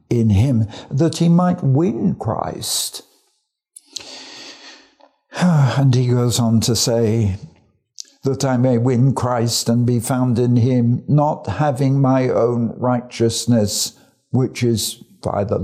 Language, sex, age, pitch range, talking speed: English, male, 60-79, 120-170 Hz, 125 wpm